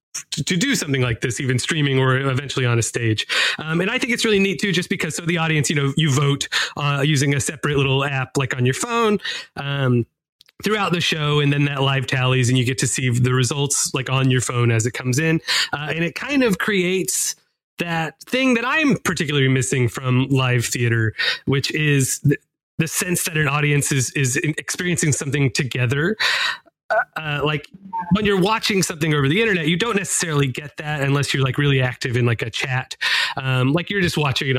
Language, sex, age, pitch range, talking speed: English, male, 30-49, 130-170 Hz, 205 wpm